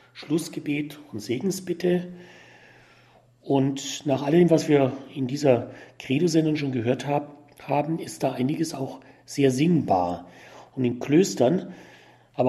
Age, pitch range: 40-59, 130-165 Hz